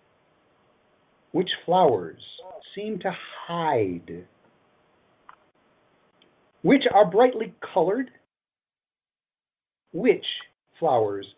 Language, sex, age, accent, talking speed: English, male, 50-69, American, 60 wpm